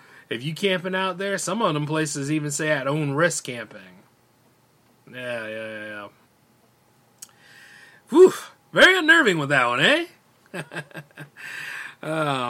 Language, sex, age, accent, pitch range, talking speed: English, male, 30-49, American, 140-200 Hz, 130 wpm